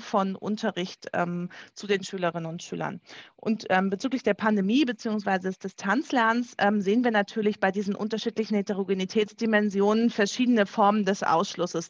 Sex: female